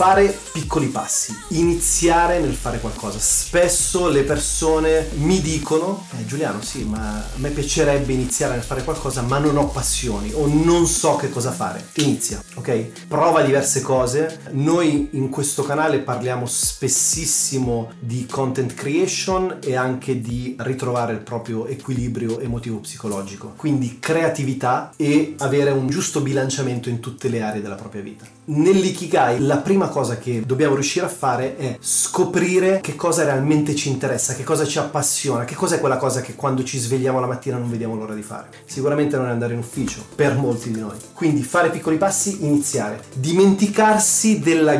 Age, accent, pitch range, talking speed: 30-49, native, 125-155 Hz, 165 wpm